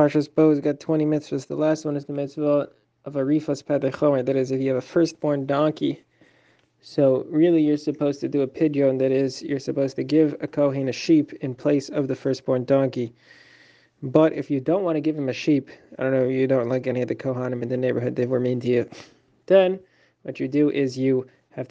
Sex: male